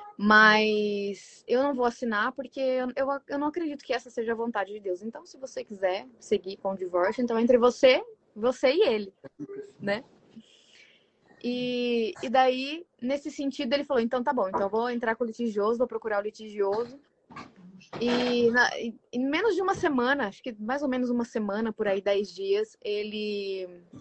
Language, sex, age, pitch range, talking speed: Portuguese, female, 20-39, 215-270 Hz, 180 wpm